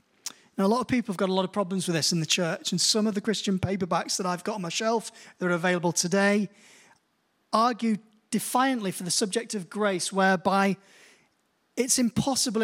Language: English